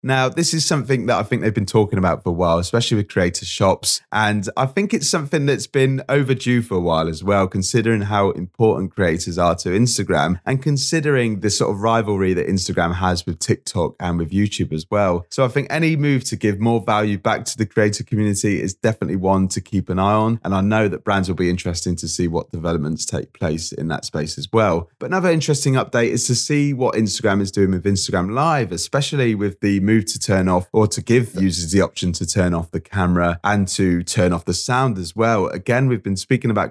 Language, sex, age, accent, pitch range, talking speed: English, male, 20-39, British, 90-120 Hz, 225 wpm